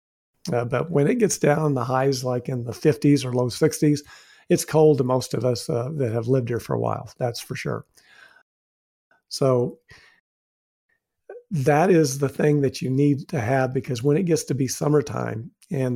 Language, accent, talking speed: English, American, 190 wpm